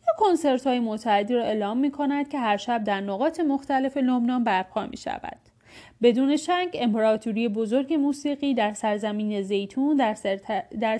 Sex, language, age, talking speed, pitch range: female, Persian, 30-49, 145 wpm, 220-295 Hz